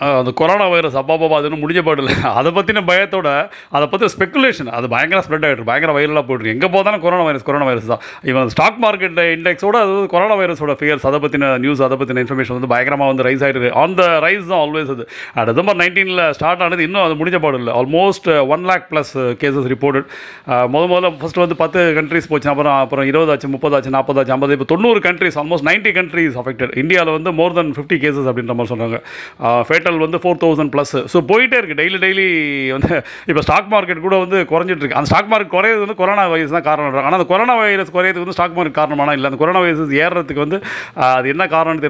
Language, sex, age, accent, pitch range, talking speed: Tamil, male, 30-49, native, 140-180 Hz, 140 wpm